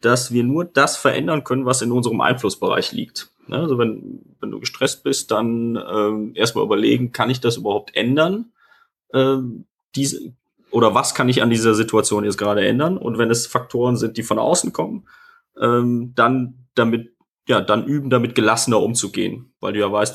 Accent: German